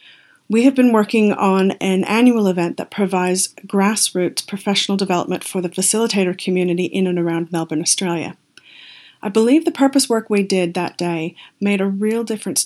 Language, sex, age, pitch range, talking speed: English, female, 40-59, 180-220 Hz, 165 wpm